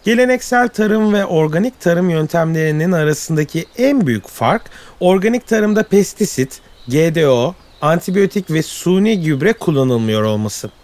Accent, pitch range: native, 150-215 Hz